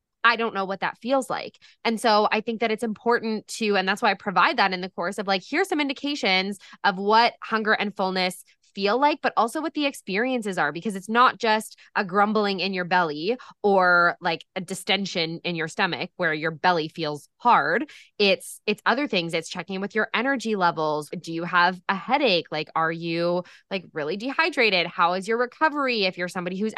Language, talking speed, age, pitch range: English, 205 wpm, 20-39, 175-220 Hz